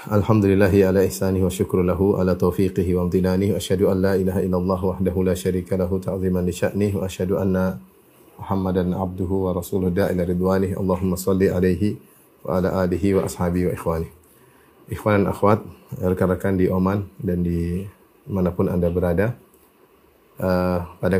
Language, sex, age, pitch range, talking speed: Indonesian, male, 30-49, 95-100 Hz, 155 wpm